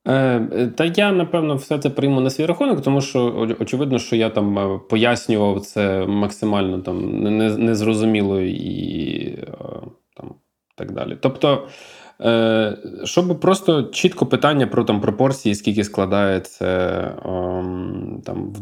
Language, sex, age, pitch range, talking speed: Ukrainian, male, 20-39, 100-135 Hz, 125 wpm